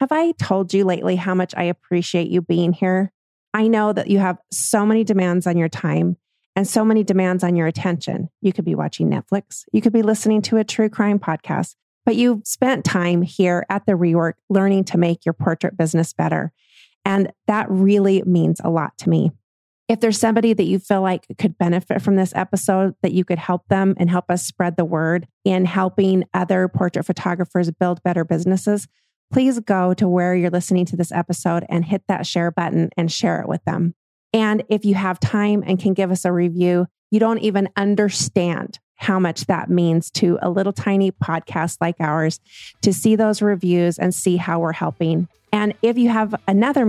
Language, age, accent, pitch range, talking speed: English, 30-49, American, 175-210 Hz, 200 wpm